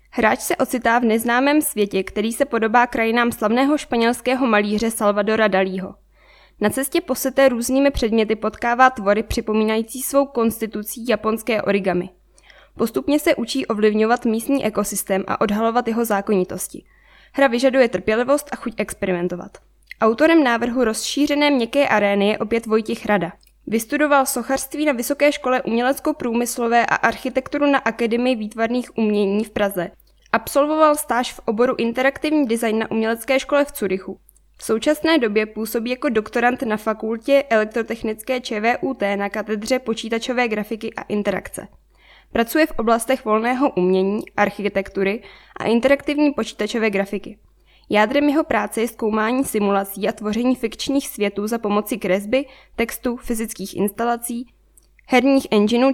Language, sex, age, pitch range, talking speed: Czech, female, 10-29, 210-260 Hz, 130 wpm